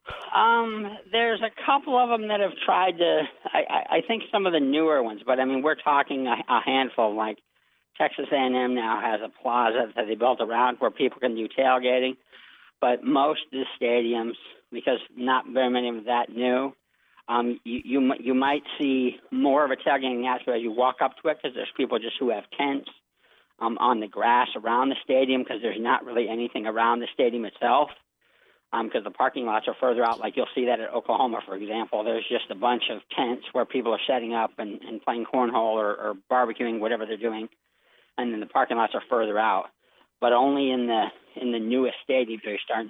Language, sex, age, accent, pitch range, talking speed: English, male, 50-69, American, 115-135 Hz, 210 wpm